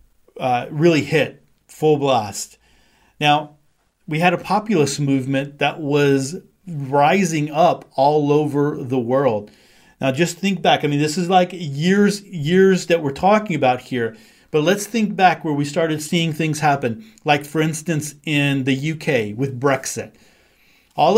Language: English